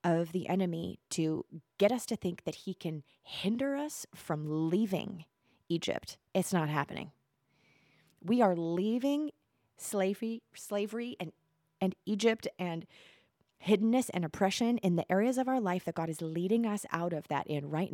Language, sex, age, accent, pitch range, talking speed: English, female, 30-49, American, 160-195 Hz, 155 wpm